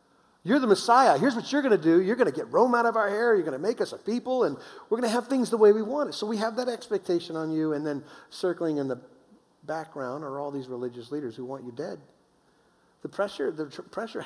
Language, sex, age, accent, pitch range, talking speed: English, male, 50-69, American, 135-195 Hz, 265 wpm